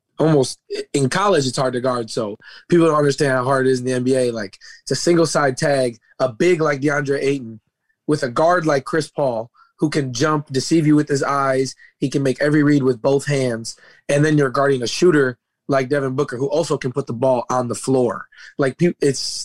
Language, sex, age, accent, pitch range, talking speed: English, male, 20-39, American, 125-150 Hz, 220 wpm